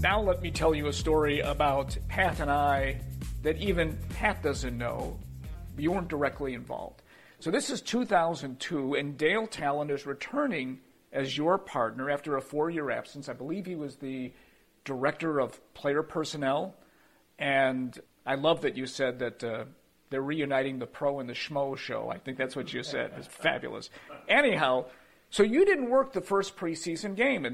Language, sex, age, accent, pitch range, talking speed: English, male, 50-69, American, 130-175 Hz, 175 wpm